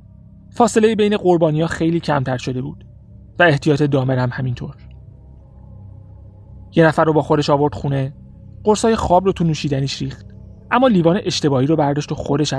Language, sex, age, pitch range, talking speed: Persian, male, 30-49, 125-165 Hz, 155 wpm